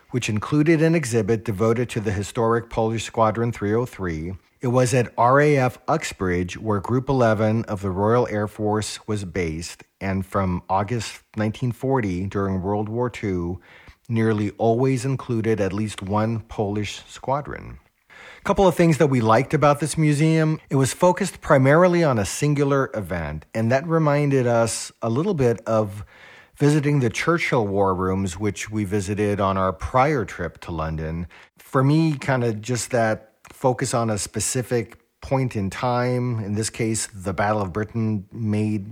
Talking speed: 160 wpm